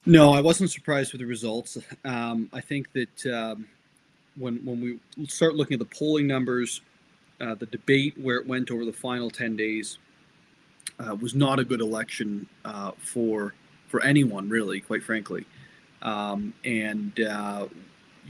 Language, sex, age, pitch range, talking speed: English, male, 30-49, 115-145 Hz, 155 wpm